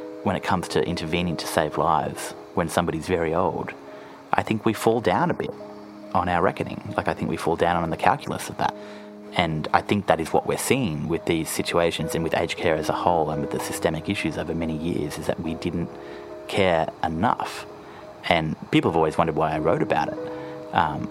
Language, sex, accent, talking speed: English, male, Australian, 215 wpm